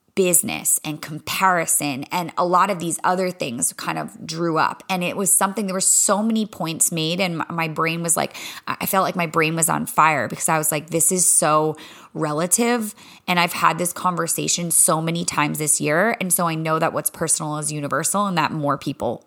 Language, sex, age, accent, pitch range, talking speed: English, female, 20-39, American, 165-215 Hz, 210 wpm